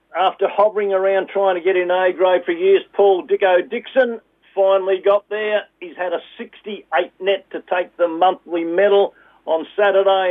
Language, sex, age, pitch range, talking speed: English, male, 50-69, 155-200 Hz, 170 wpm